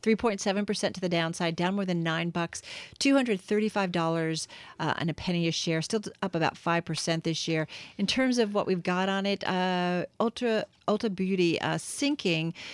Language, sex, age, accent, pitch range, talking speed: English, female, 40-59, American, 160-200 Hz, 205 wpm